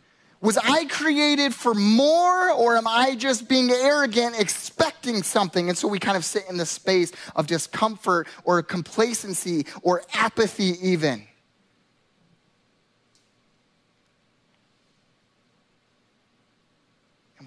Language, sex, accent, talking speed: English, male, American, 105 wpm